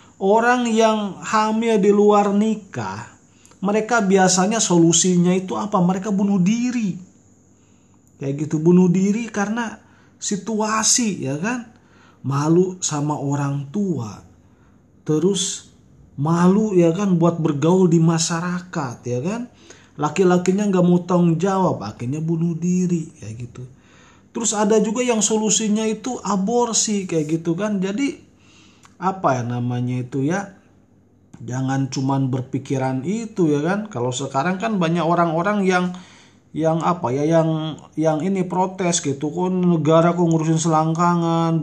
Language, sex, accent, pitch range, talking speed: Indonesian, male, native, 140-200 Hz, 125 wpm